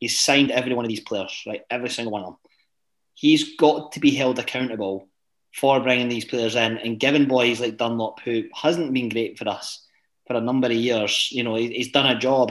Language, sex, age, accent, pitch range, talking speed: English, male, 30-49, British, 115-140 Hz, 220 wpm